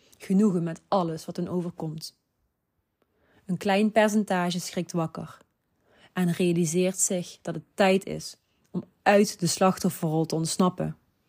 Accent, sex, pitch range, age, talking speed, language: Dutch, female, 160-185 Hz, 30-49, 130 wpm, Dutch